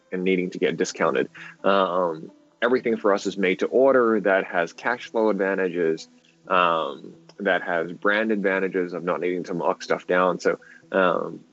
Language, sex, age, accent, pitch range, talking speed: English, male, 20-39, American, 95-125 Hz, 165 wpm